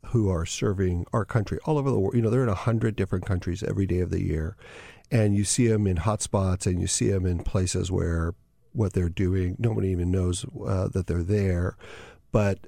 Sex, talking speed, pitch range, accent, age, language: male, 220 wpm, 95-115 Hz, American, 50-69, English